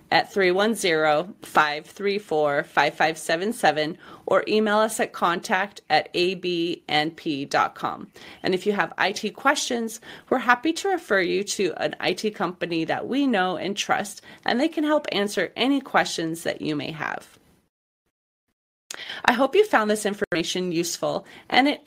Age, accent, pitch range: 30-49, American, 170-245 Hz